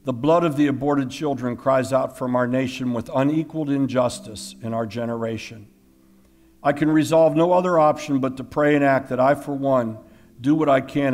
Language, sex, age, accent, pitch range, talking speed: English, male, 50-69, American, 110-140 Hz, 195 wpm